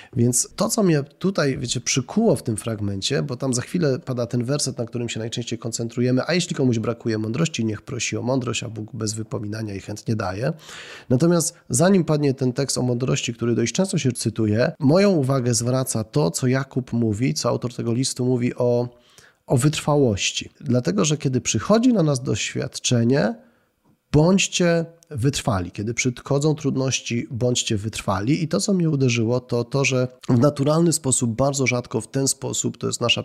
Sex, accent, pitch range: male, native, 120-150 Hz